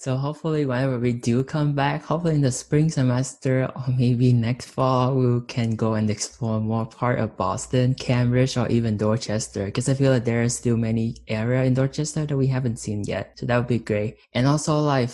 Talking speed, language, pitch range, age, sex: 210 wpm, English, 120-140 Hz, 20-39, male